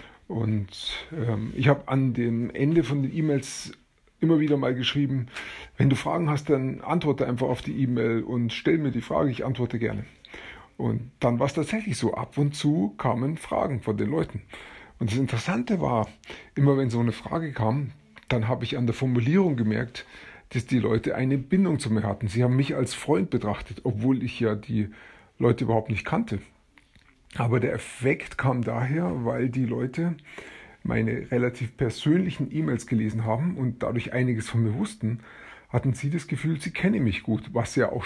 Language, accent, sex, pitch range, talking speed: German, German, male, 115-140 Hz, 185 wpm